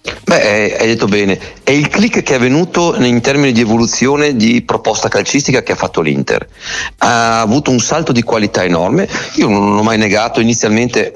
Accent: native